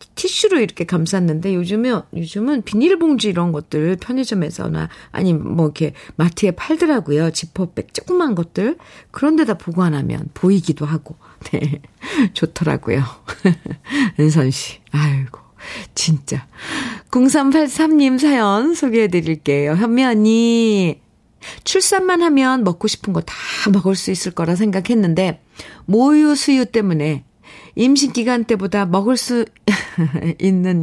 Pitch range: 160-225 Hz